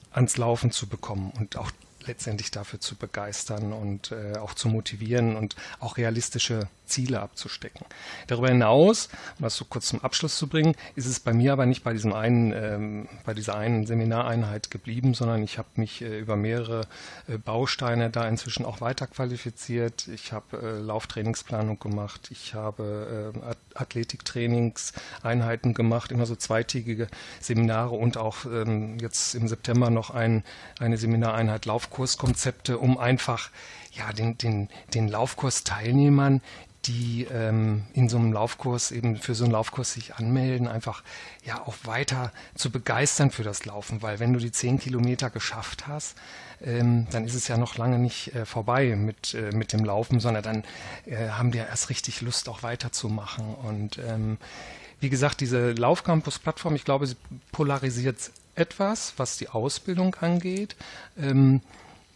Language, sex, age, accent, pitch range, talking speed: German, male, 40-59, German, 110-125 Hz, 160 wpm